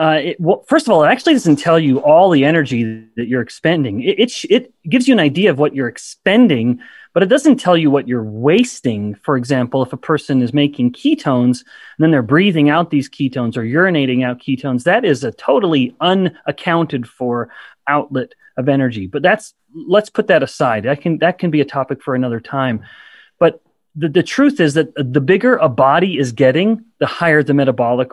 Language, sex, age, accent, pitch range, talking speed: English, male, 30-49, American, 130-180 Hz, 205 wpm